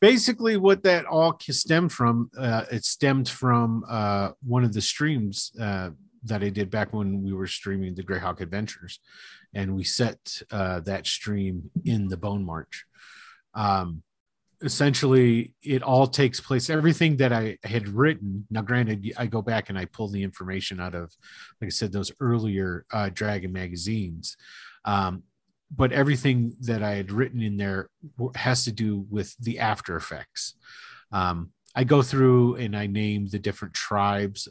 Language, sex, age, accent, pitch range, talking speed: English, male, 40-59, American, 95-120 Hz, 165 wpm